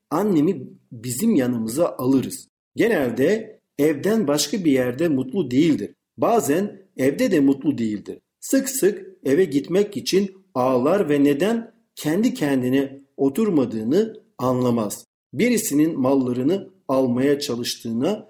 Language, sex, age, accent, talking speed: Turkish, male, 50-69, native, 105 wpm